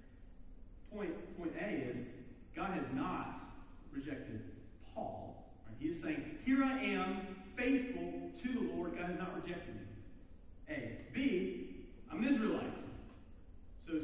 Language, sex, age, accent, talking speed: English, male, 40-59, American, 130 wpm